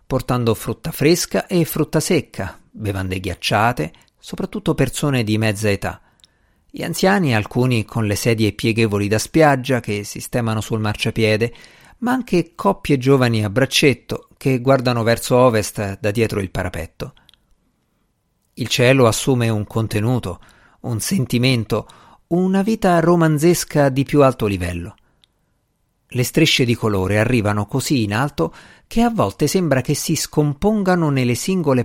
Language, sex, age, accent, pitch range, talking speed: Italian, male, 50-69, native, 105-155 Hz, 135 wpm